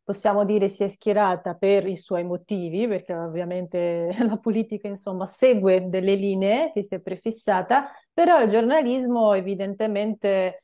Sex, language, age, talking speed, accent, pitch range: female, Italian, 30-49, 140 wpm, native, 195-230 Hz